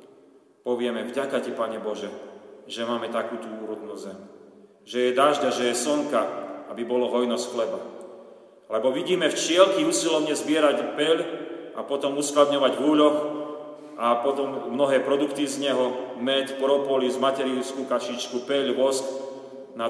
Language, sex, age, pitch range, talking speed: Slovak, male, 40-59, 120-150 Hz, 130 wpm